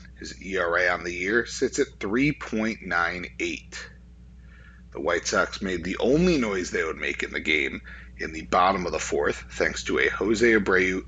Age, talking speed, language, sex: 30-49, 175 wpm, English, male